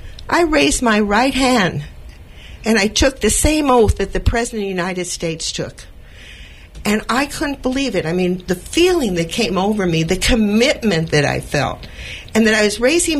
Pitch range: 155-225 Hz